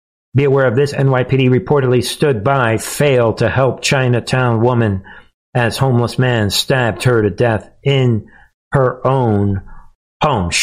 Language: English